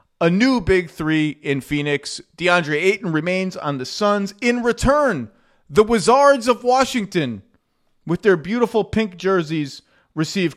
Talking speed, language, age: 135 wpm, English, 30-49